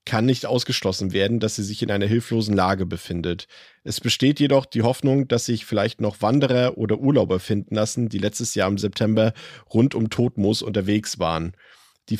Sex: male